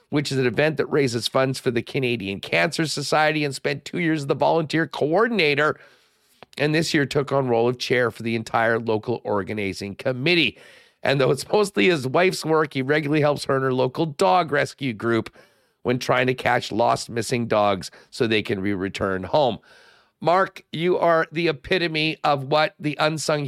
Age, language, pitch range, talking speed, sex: 50-69, English, 130-165 Hz, 185 wpm, male